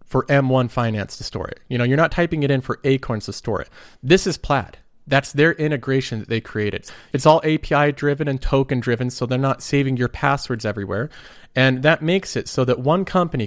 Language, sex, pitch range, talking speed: English, male, 120-145 Hz, 220 wpm